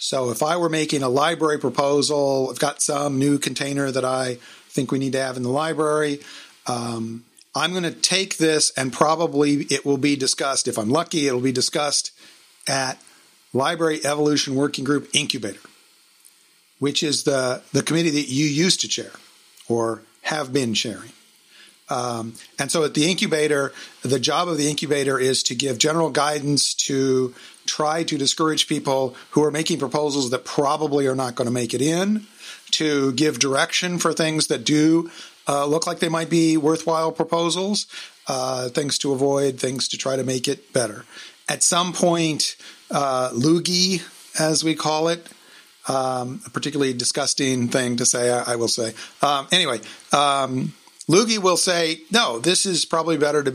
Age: 50-69